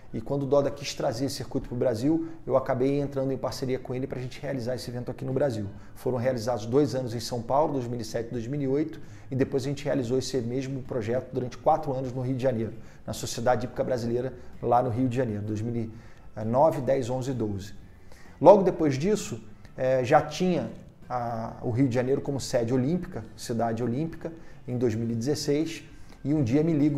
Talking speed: 195 wpm